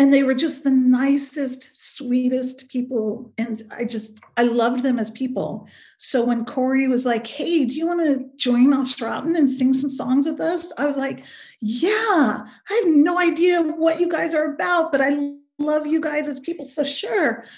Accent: American